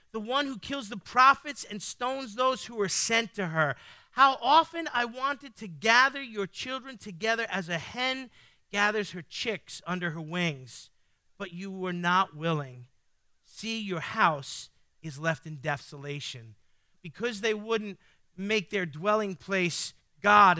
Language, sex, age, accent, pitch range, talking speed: English, male, 40-59, American, 165-225 Hz, 150 wpm